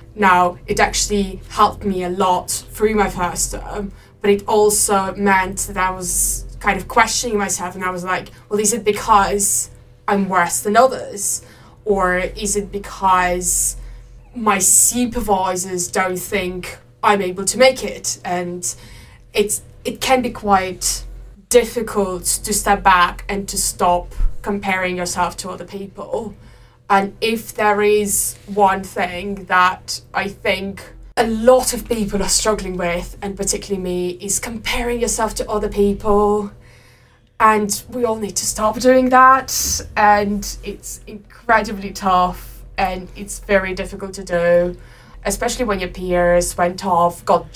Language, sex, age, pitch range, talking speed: English, female, 20-39, 180-210 Hz, 145 wpm